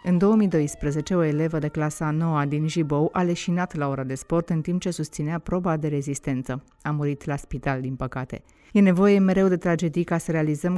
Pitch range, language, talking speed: 145-180 Hz, Romanian, 205 wpm